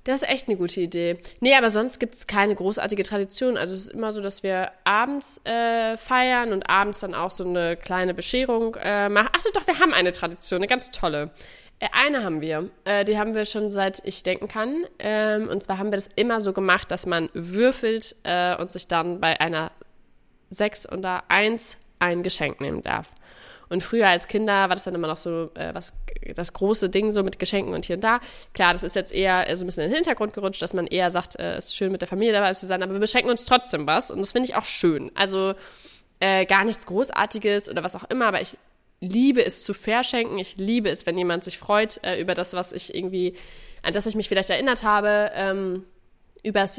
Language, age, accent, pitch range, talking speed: German, 20-39, German, 180-220 Hz, 225 wpm